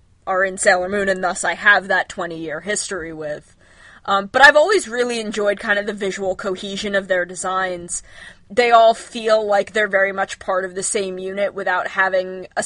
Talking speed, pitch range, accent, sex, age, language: 195 wpm, 180-210 Hz, American, female, 20-39, English